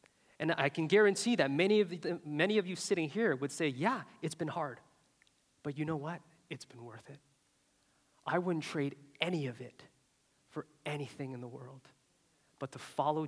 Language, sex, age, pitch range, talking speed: English, male, 30-49, 130-165 Hz, 175 wpm